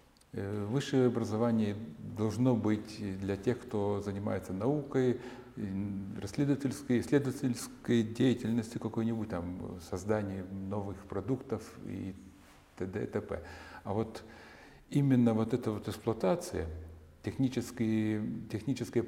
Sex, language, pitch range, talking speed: male, Russian, 100-125 Hz, 80 wpm